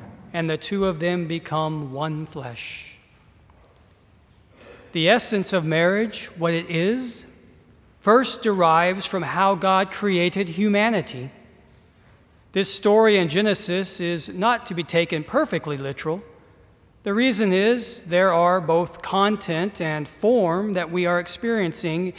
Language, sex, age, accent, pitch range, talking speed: English, male, 40-59, American, 165-210 Hz, 125 wpm